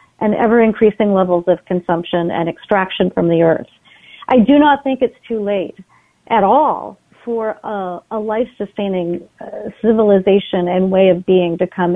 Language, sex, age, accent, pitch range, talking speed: English, female, 40-59, American, 195-260 Hz, 160 wpm